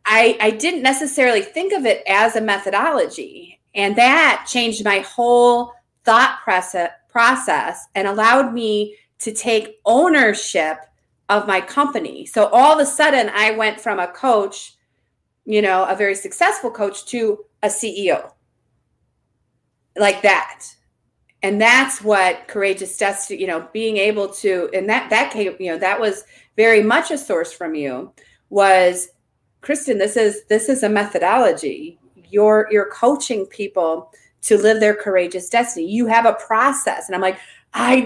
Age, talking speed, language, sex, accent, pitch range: 30-49, 150 wpm, English, female, American, 190-240 Hz